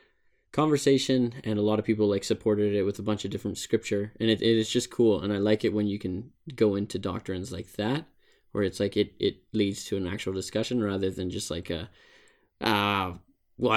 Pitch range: 100-115 Hz